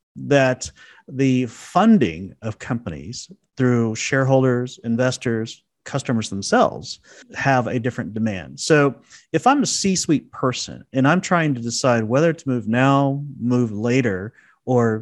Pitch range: 115-150 Hz